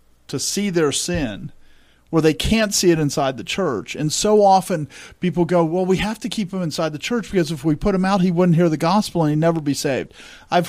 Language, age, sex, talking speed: English, 50-69, male, 240 wpm